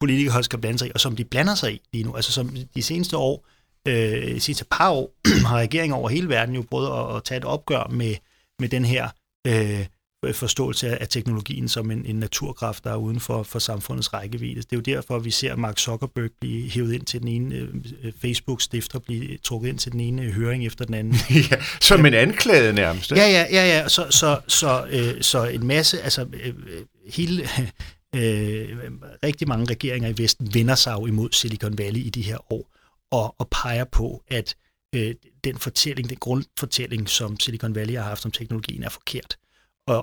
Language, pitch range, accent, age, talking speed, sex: Danish, 115-135 Hz, native, 30-49, 205 wpm, male